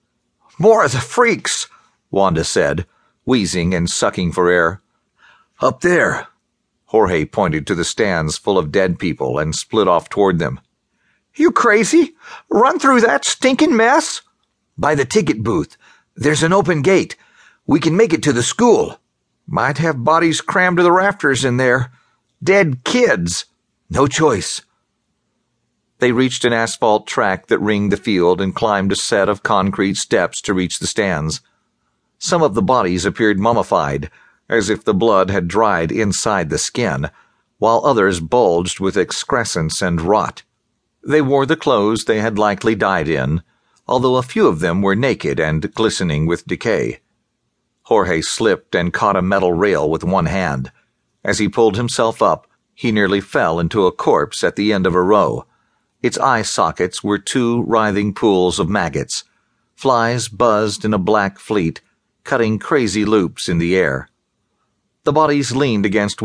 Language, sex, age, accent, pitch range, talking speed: English, male, 50-69, American, 95-130 Hz, 160 wpm